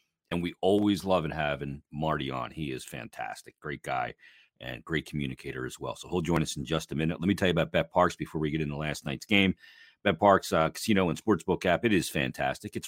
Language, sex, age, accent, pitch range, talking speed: English, male, 40-59, American, 80-105 Hz, 235 wpm